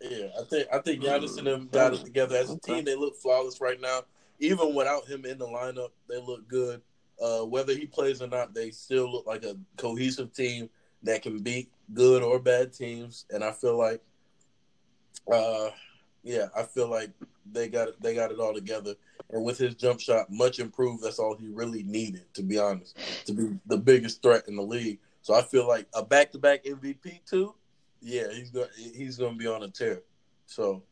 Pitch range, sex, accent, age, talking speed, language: 115-135 Hz, male, American, 20-39, 210 wpm, English